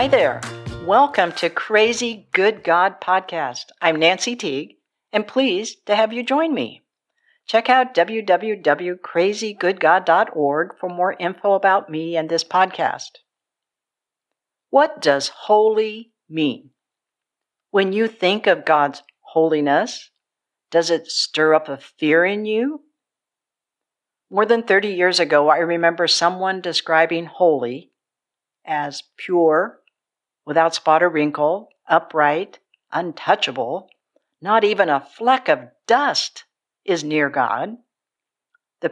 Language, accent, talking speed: English, American, 115 wpm